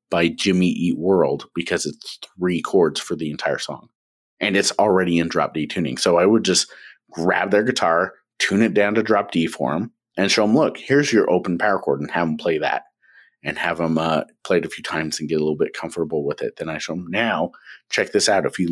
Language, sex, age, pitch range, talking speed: English, male, 30-49, 80-100 Hz, 240 wpm